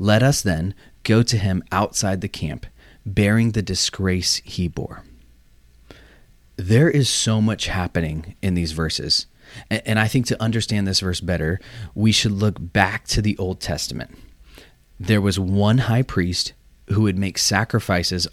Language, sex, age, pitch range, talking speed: English, male, 30-49, 85-110 Hz, 155 wpm